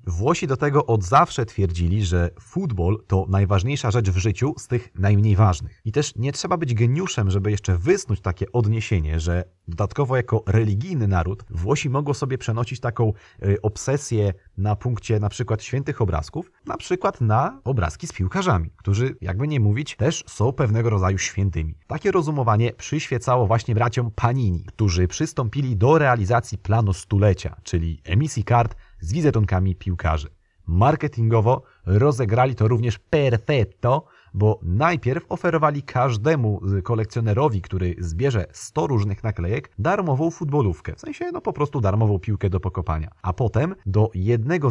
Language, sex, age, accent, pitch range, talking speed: Polish, male, 30-49, native, 100-130 Hz, 145 wpm